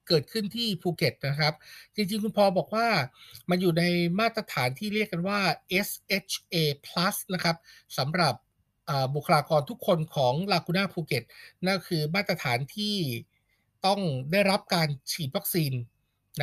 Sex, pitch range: male, 150-200 Hz